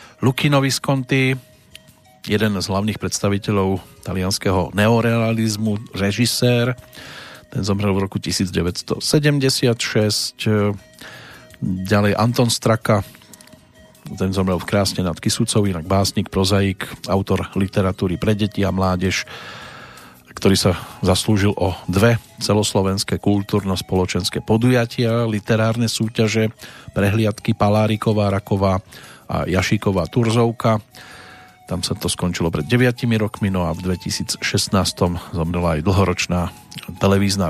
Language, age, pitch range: Slovak, 40-59, 95-110 Hz